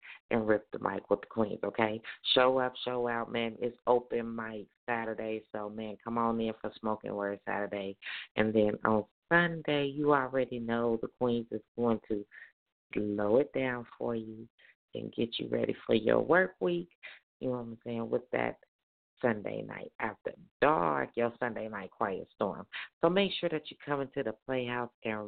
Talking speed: 185 wpm